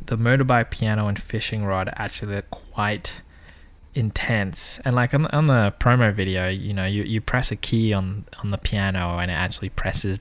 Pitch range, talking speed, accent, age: 95-120 Hz, 190 wpm, Australian, 10-29